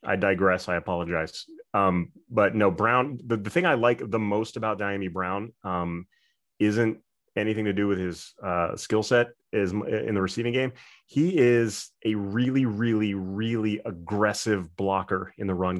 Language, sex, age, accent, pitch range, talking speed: English, male, 30-49, American, 95-110 Hz, 165 wpm